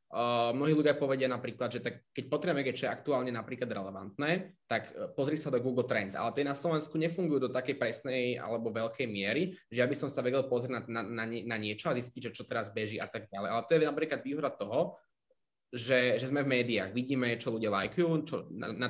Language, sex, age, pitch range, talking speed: Slovak, male, 20-39, 115-140 Hz, 220 wpm